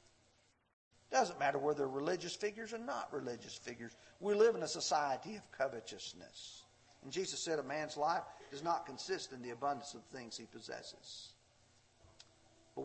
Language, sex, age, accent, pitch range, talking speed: English, male, 50-69, American, 120-175 Hz, 165 wpm